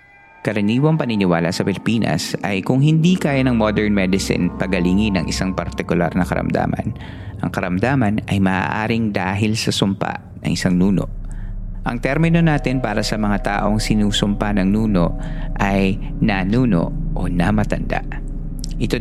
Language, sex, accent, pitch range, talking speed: Filipino, male, native, 95-125 Hz, 135 wpm